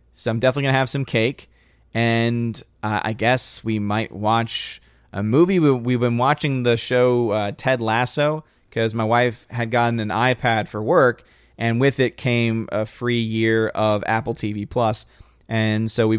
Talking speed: 180 wpm